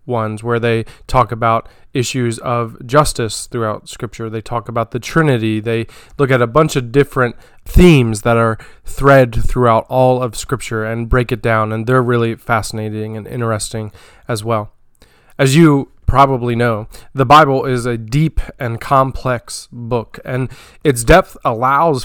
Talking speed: 160 wpm